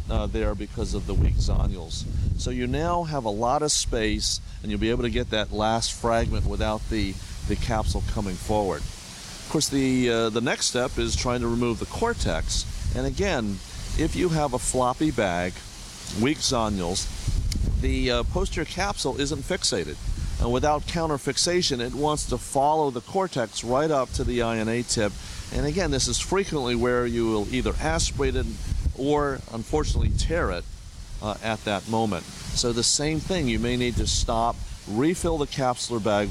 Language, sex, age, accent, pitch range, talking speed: English, male, 40-59, American, 100-135 Hz, 180 wpm